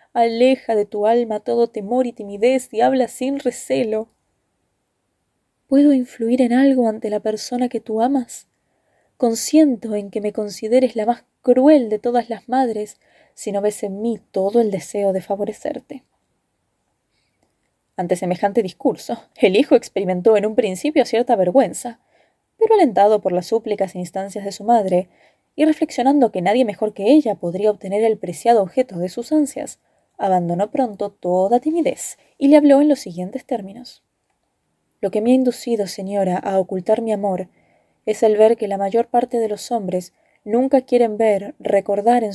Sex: female